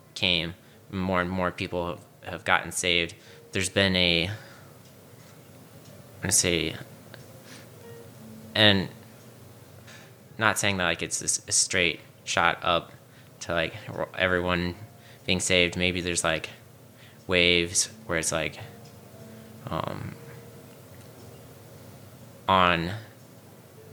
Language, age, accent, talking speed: English, 20-39, American, 100 wpm